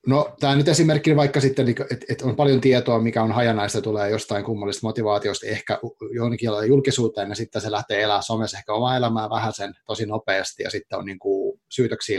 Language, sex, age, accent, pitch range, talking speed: Finnish, male, 30-49, native, 105-135 Hz, 180 wpm